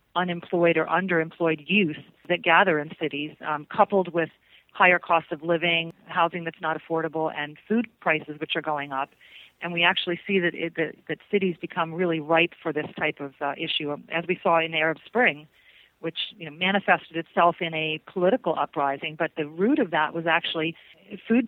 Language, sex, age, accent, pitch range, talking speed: English, female, 40-59, American, 155-175 Hz, 185 wpm